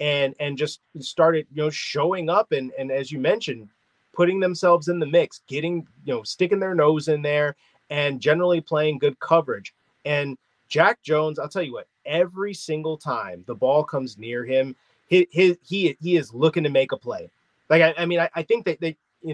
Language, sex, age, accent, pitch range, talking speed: English, male, 30-49, American, 135-175 Hz, 200 wpm